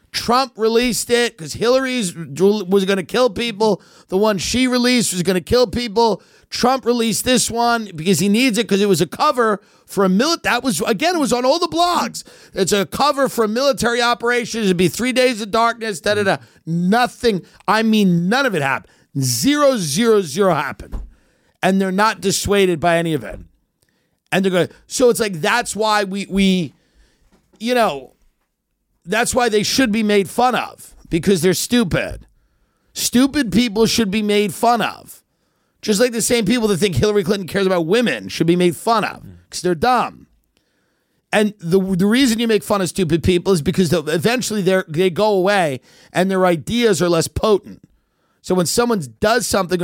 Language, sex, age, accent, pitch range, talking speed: English, male, 50-69, American, 185-240 Hz, 185 wpm